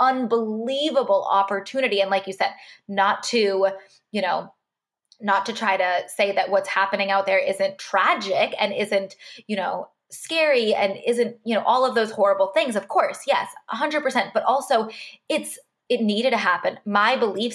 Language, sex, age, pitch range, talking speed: English, female, 20-39, 195-255 Hz, 175 wpm